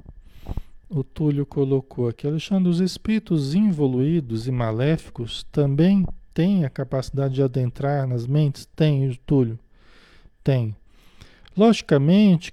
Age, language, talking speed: 40-59, Portuguese, 105 wpm